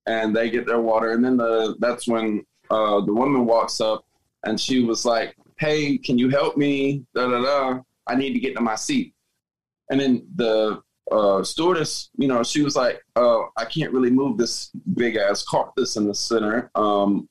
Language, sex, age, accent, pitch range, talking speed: English, male, 20-39, American, 105-125 Hz, 200 wpm